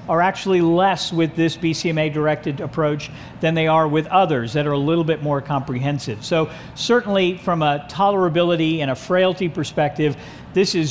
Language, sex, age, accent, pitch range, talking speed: English, male, 50-69, American, 145-180 Hz, 170 wpm